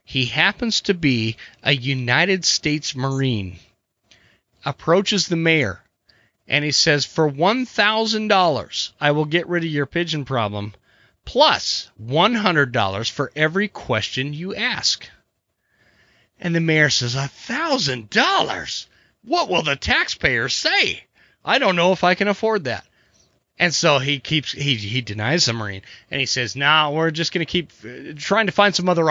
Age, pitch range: 30-49, 135-195 Hz